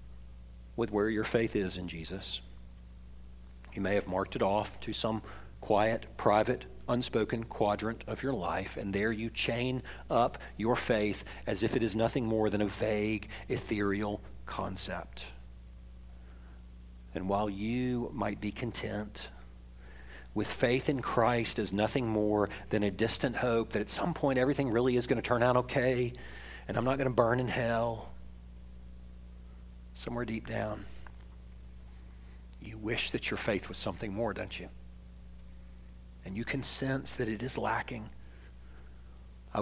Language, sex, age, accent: English, male, 50-69, American